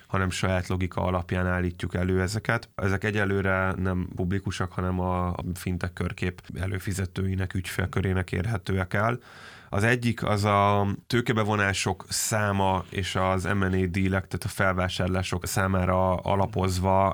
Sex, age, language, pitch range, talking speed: male, 20-39, Hungarian, 95-105 Hz, 120 wpm